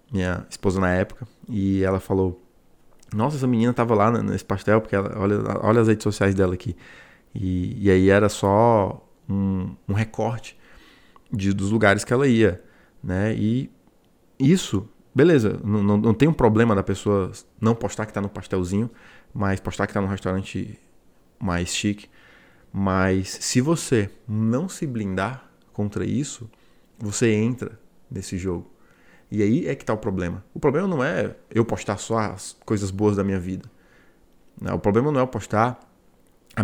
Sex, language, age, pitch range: male, Portuguese, 20-39, 95-115 Hz